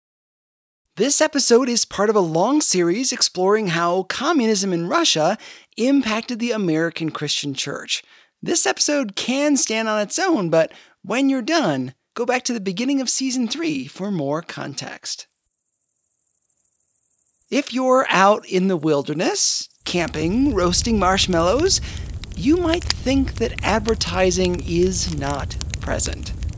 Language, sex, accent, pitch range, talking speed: English, male, American, 165-260 Hz, 130 wpm